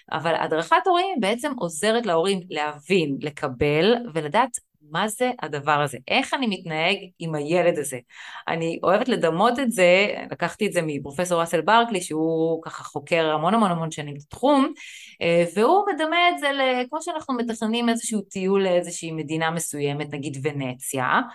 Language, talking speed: Hebrew, 145 wpm